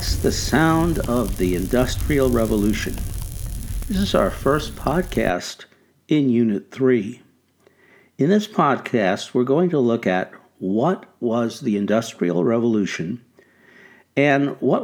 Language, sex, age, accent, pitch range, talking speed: English, male, 60-79, American, 105-150 Hz, 120 wpm